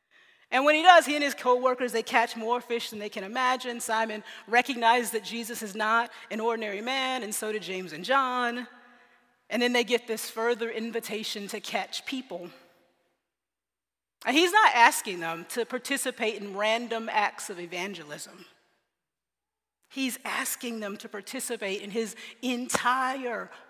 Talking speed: 155 wpm